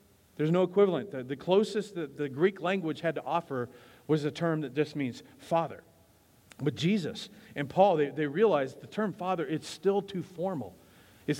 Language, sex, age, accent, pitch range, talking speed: English, male, 40-59, American, 135-175 Hz, 185 wpm